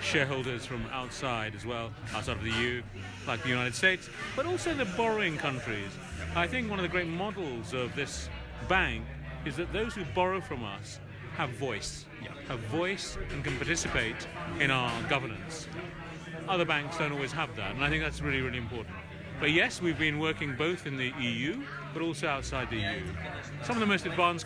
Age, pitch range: 40-59, 115-160 Hz